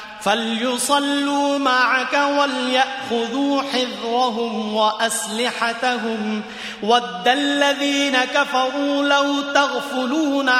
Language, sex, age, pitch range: Korean, male, 30-49, 215-275 Hz